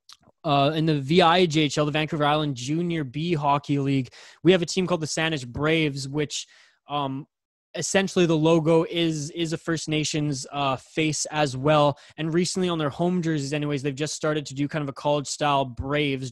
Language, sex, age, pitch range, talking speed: English, male, 20-39, 140-160 Hz, 185 wpm